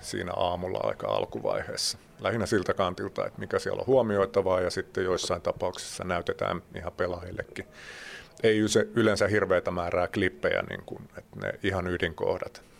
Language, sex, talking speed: Finnish, male, 135 wpm